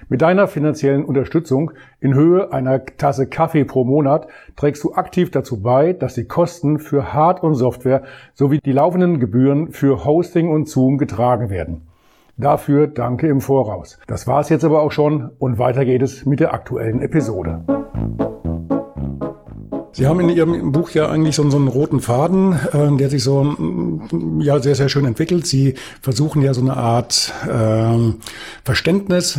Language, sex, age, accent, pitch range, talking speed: German, male, 50-69, German, 120-150 Hz, 160 wpm